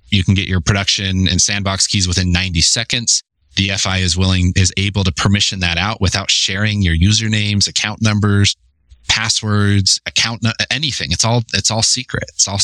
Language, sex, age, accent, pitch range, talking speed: English, male, 30-49, American, 85-105 Hz, 170 wpm